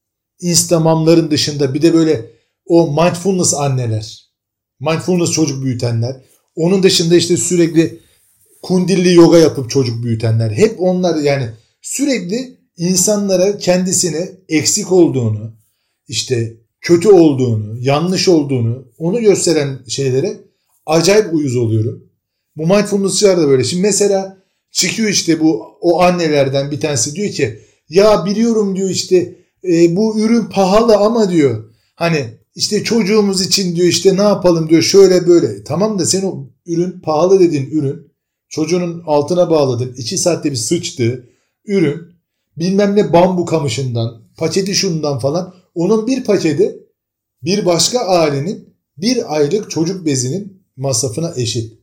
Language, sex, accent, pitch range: Turkish, male, native, 140-195 Hz